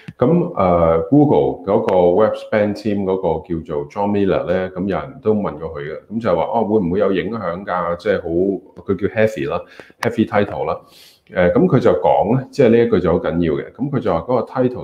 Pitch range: 85-120 Hz